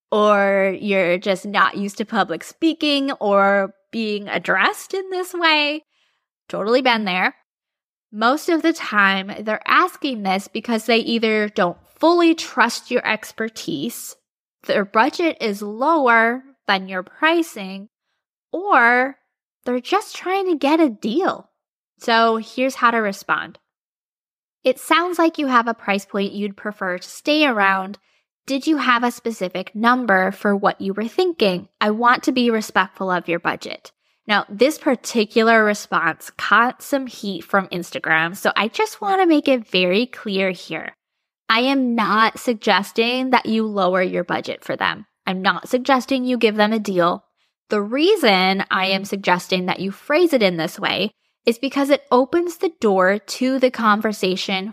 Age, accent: 10-29, American